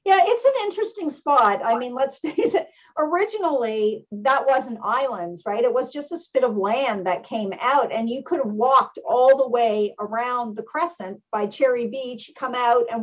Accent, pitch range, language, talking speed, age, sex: American, 205-260 Hz, English, 195 wpm, 50-69, female